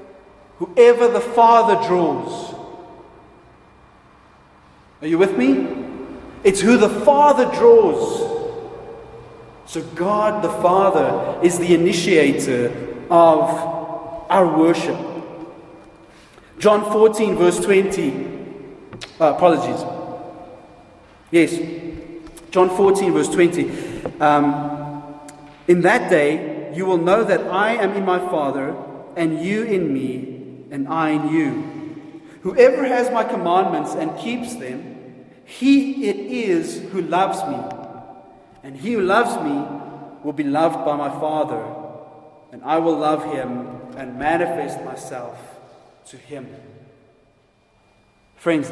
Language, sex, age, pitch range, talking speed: English, male, 40-59, 145-195 Hz, 110 wpm